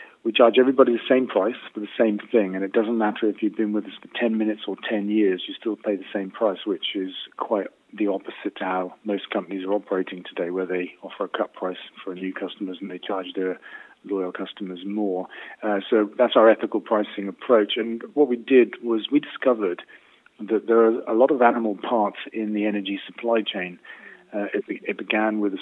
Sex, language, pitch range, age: male, English, 95-115 Hz, 40-59